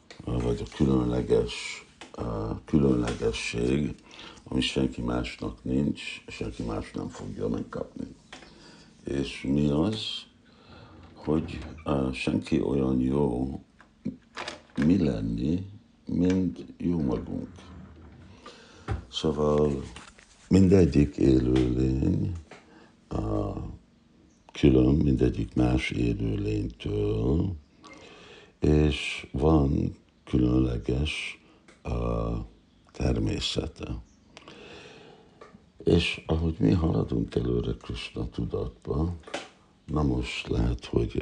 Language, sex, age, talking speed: Hungarian, male, 60-79, 70 wpm